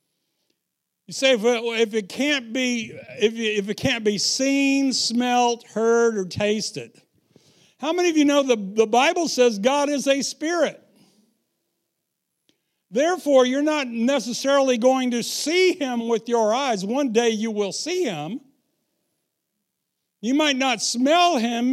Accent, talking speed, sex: American, 135 wpm, male